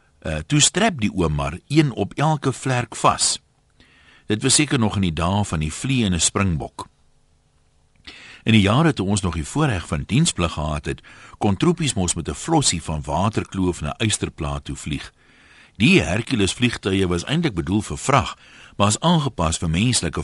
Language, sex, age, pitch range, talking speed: Dutch, male, 60-79, 80-120 Hz, 165 wpm